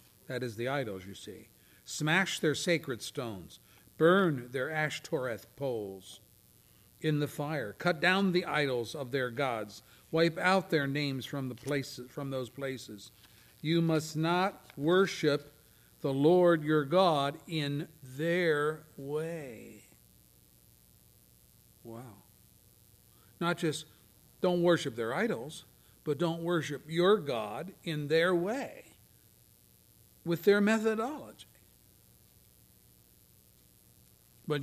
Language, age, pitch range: English, 50-69, 115-160 Hz